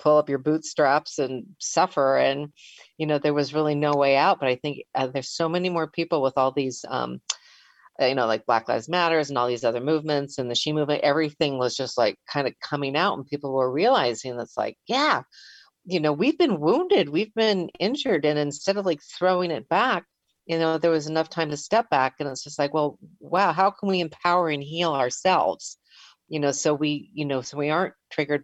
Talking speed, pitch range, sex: 220 wpm, 140-165 Hz, female